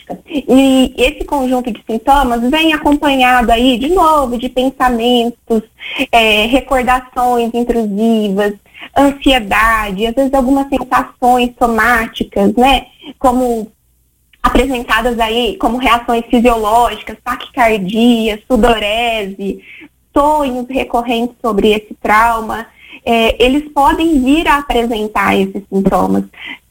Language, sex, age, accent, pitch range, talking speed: Portuguese, female, 20-39, Brazilian, 225-275 Hz, 90 wpm